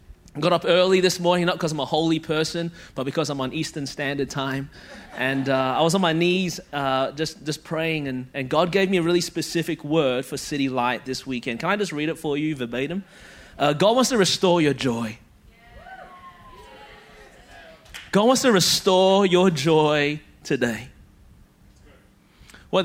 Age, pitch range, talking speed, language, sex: 20-39, 145-195 Hz, 175 wpm, English, male